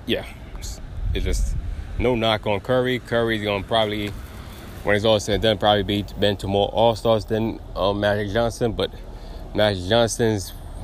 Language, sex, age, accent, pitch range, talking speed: English, male, 20-39, American, 95-115 Hz, 165 wpm